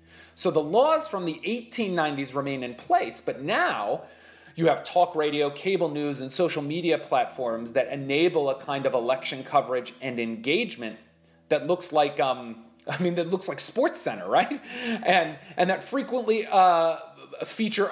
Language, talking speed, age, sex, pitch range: English, 155 wpm, 30-49, male, 135-200 Hz